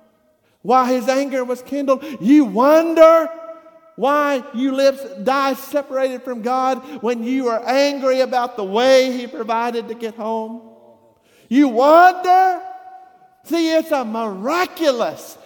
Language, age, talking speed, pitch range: English, 50-69, 125 wpm, 255-330 Hz